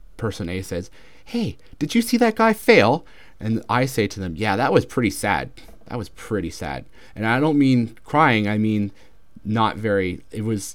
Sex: male